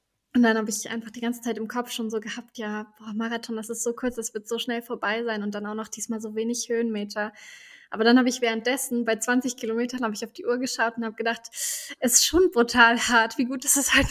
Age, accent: 20-39, German